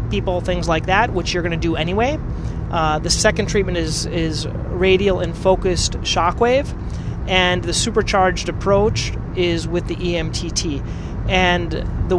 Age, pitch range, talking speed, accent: 30-49, 120-185 Hz, 150 wpm, American